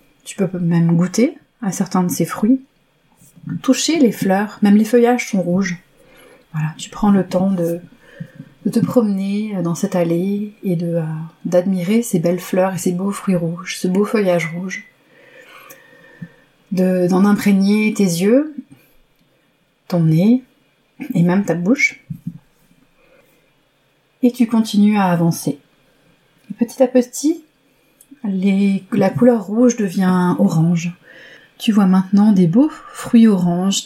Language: French